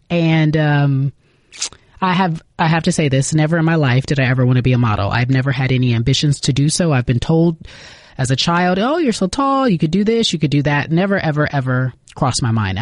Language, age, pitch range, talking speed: English, 30-49, 130-170 Hz, 250 wpm